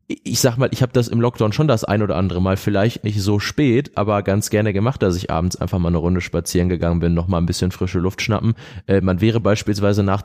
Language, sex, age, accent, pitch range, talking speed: German, male, 20-39, German, 95-110 Hz, 250 wpm